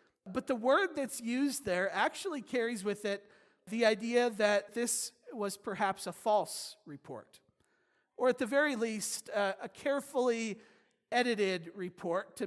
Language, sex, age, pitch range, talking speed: English, male, 40-59, 185-245 Hz, 145 wpm